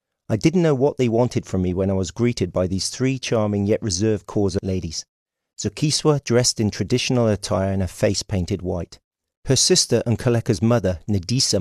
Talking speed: 185 wpm